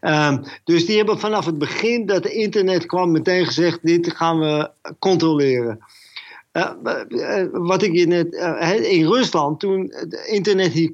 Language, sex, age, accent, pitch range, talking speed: Dutch, male, 50-69, Dutch, 155-205 Hz, 155 wpm